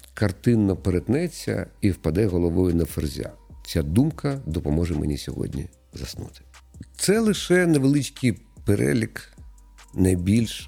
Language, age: Ukrainian, 50-69